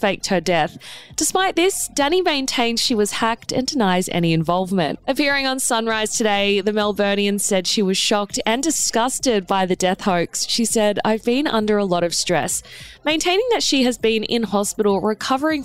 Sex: female